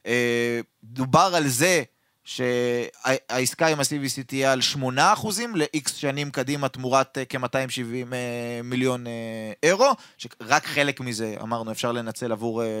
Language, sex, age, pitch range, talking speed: Hebrew, male, 20-39, 120-160 Hz, 115 wpm